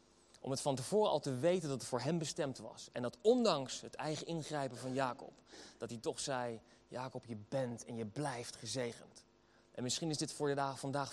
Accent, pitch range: Dutch, 115-160 Hz